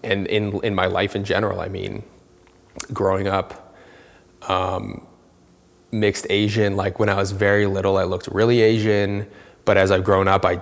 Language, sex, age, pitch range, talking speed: English, male, 20-39, 95-110 Hz, 170 wpm